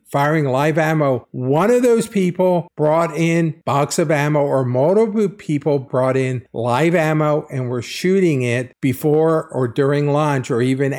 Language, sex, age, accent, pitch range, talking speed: English, male, 50-69, American, 125-155 Hz, 160 wpm